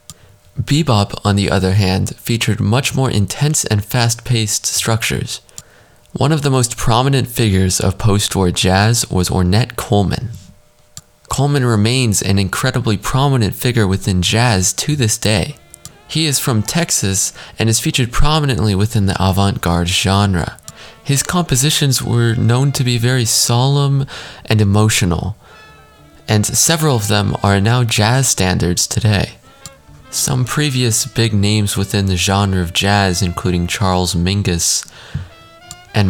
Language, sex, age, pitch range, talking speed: English, male, 20-39, 95-120 Hz, 135 wpm